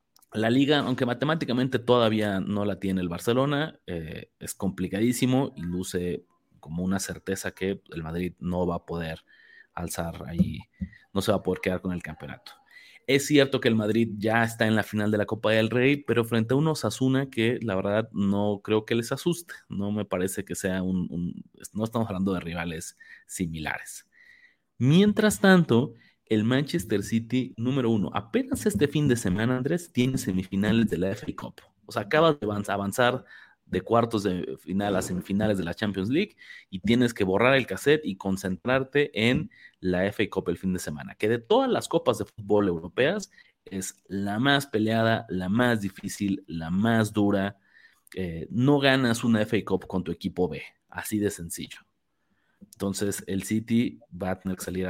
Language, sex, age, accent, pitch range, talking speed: Spanish, male, 30-49, Mexican, 95-130 Hz, 180 wpm